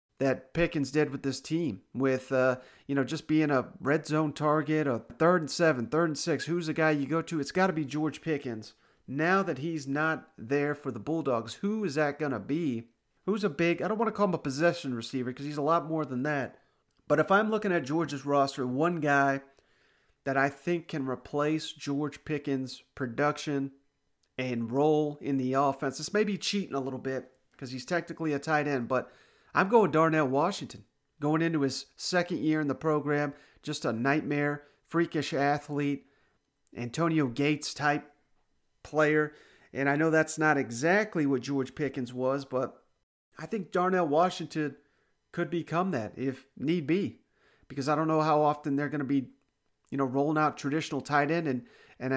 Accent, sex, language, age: American, male, English, 40-59